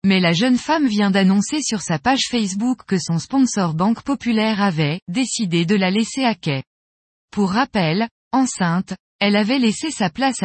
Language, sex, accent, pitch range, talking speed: French, female, French, 180-240 Hz, 170 wpm